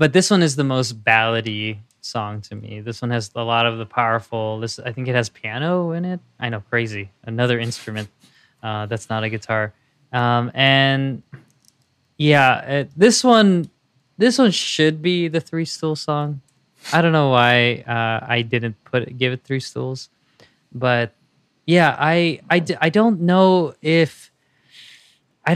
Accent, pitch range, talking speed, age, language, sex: American, 115-150 Hz, 170 wpm, 20-39, English, male